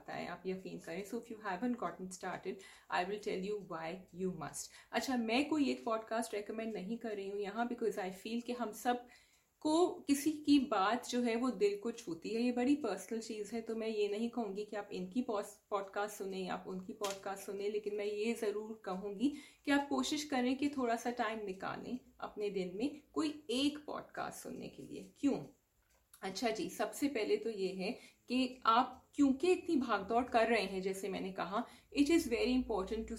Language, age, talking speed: English, 30-49, 145 wpm